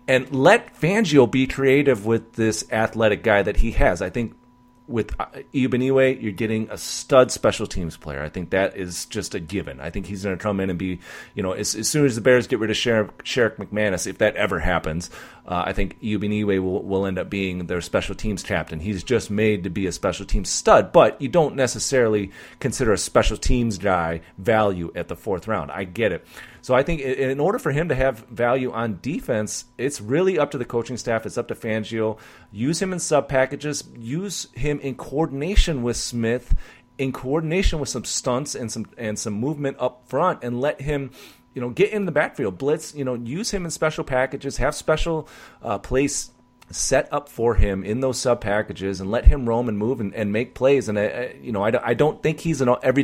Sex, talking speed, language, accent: male, 215 wpm, English, American